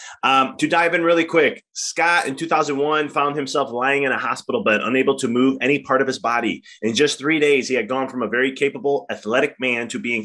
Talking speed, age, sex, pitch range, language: 230 wpm, 30-49, male, 110-140 Hz, English